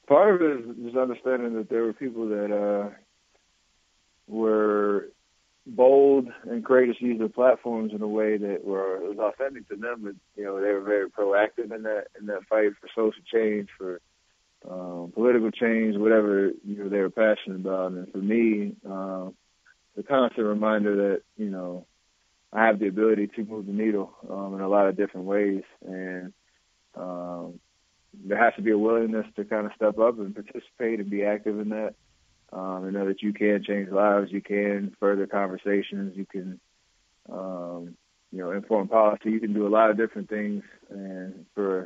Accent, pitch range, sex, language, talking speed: American, 95-110 Hz, male, English, 180 wpm